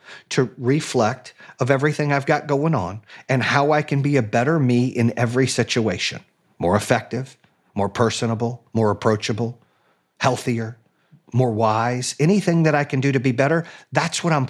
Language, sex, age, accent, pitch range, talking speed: English, male, 40-59, American, 125-165 Hz, 160 wpm